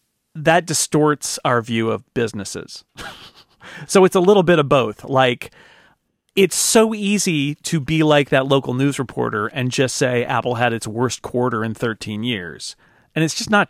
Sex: male